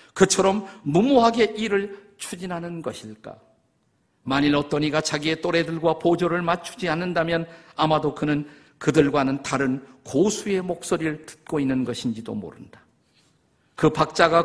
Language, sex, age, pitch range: Korean, male, 50-69, 155-195 Hz